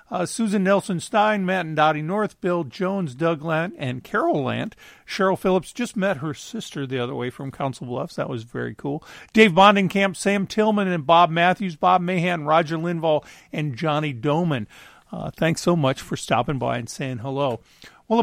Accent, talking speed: American, 180 wpm